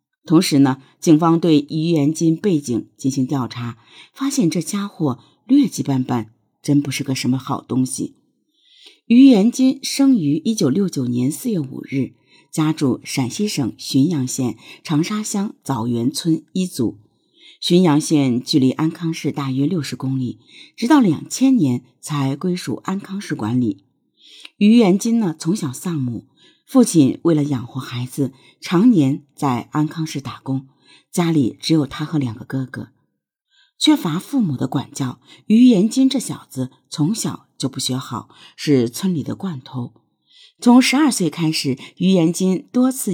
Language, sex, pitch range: Chinese, female, 135-190 Hz